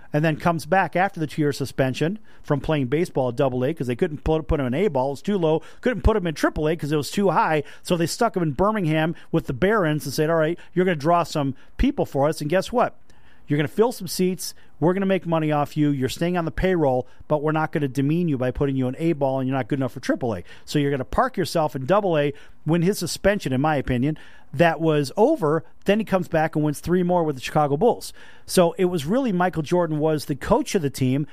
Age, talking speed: 40-59, 265 wpm